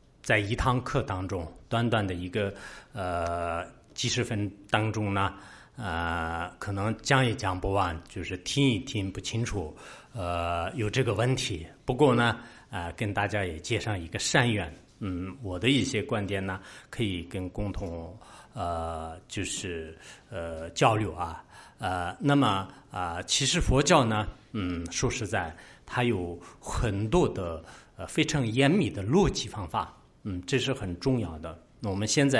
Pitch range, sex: 90-120 Hz, male